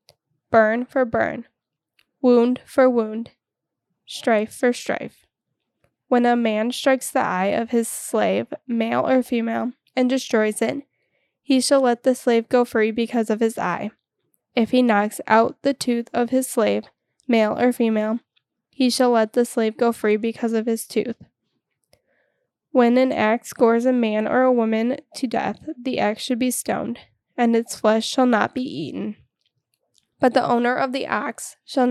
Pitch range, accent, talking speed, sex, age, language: 220-255 Hz, American, 165 wpm, female, 10-29, English